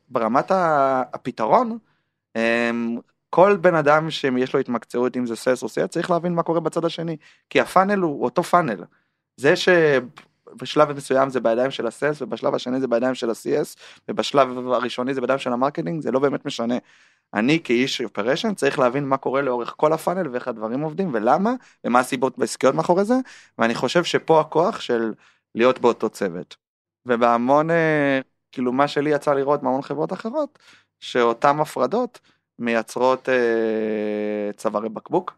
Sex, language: male, Hebrew